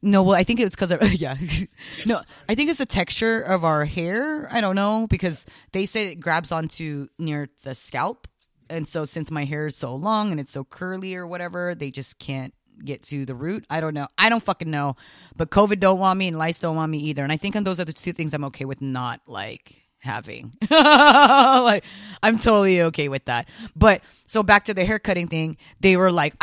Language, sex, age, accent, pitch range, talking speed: English, female, 30-49, American, 145-200 Hz, 225 wpm